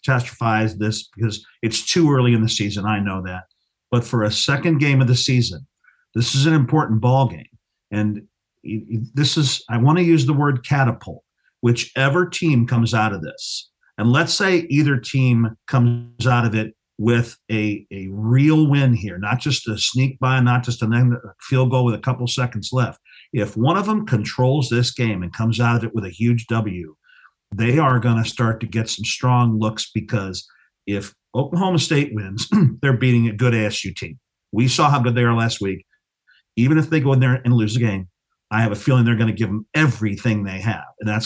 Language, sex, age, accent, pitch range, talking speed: English, male, 50-69, American, 110-130 Hz, 205 wpm